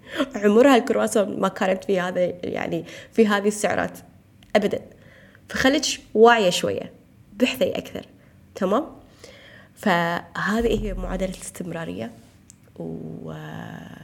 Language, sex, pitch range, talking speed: Arabic, female, 180-220 Hz, 95 wpm